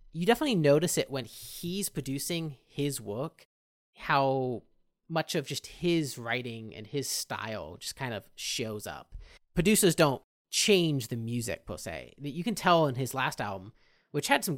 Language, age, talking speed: English, 30-49, 165 wpm